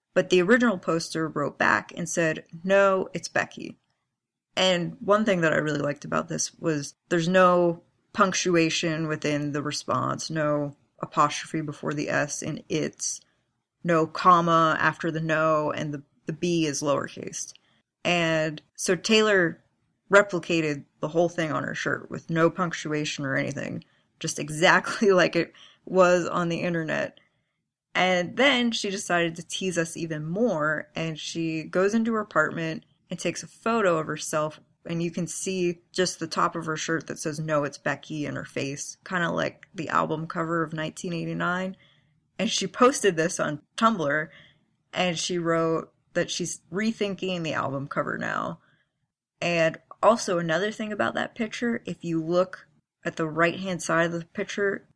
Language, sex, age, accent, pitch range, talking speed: English, female, 20-39, American, 155-185 Hz, 165 wpm